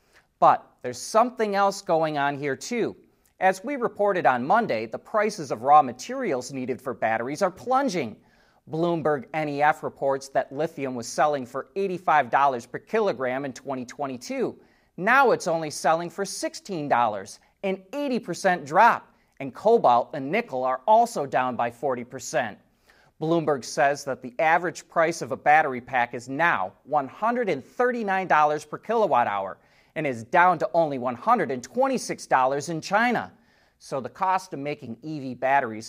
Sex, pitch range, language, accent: male, 130-195 Hz, English, American